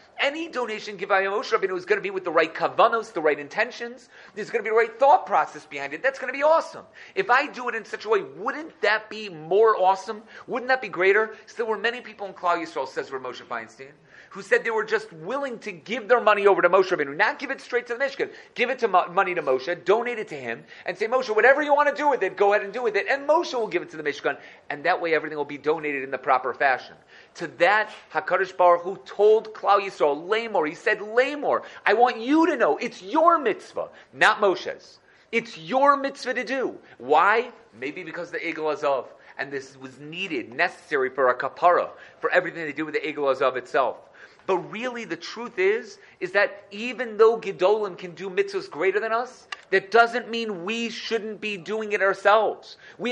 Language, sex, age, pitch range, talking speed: English, male, 40-59, 185-270 Hz, 230 wpm